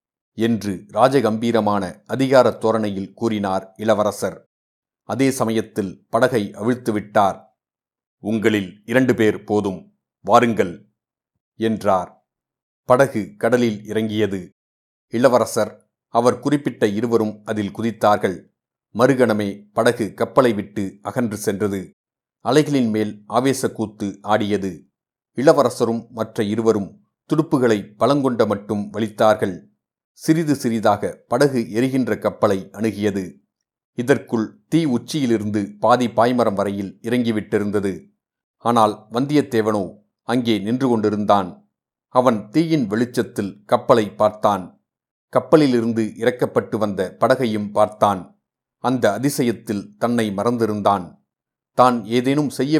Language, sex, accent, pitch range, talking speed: Tamil, male, native, 105-120 Hz, 85 wpm